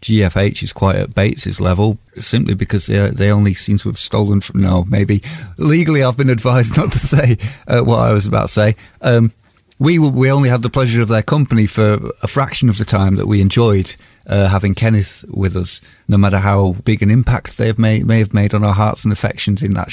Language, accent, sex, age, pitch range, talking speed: English, British, male, 30-49, 105-125 Hz, 225 wpm